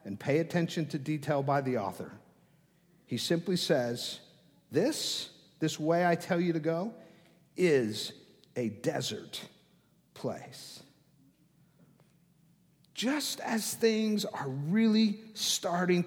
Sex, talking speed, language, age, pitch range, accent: male, 110 wpm, English, 50-69, 165-215 Hz, American